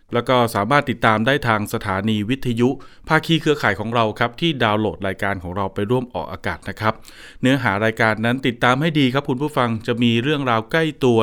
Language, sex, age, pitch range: Thai, male, 20-39, 110-140 Hz